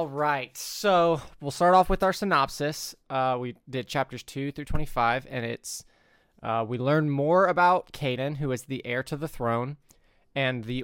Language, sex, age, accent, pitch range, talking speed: English, male, 20-39, American, 125-145 Hz, 185 wpm